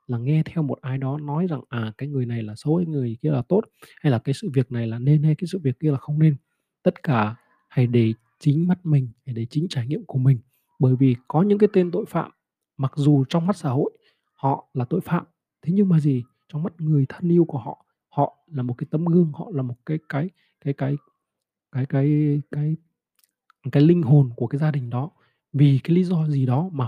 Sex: male